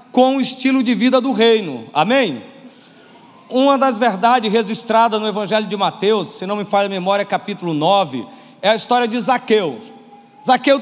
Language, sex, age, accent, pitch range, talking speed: Portuguese, male, 40-59, Brazilian, 215-265 Hz, 165 wpm